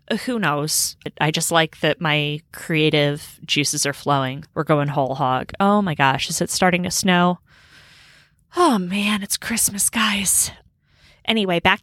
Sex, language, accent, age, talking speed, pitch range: female, English, American, 20-39, 150 wpm, 160-200 Hz